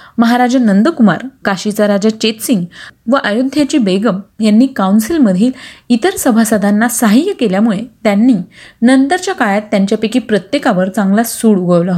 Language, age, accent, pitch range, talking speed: Marathi, 30-49, native, 200-250 Hz, 110 wpm